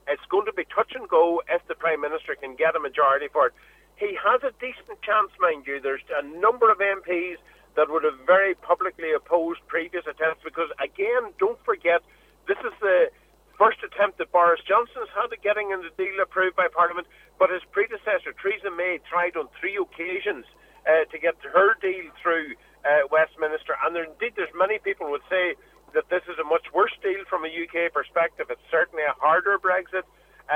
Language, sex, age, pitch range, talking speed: English, male, 50-69, 165-260 Hz, 190 wpm